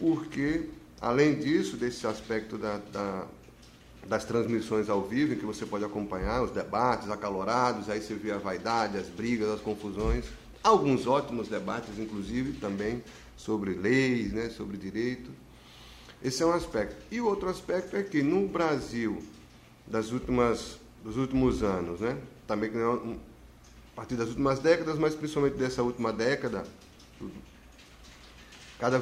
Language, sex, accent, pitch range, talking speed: Portuguese, male, Brazilian, 110-140 Hz, 130 wpm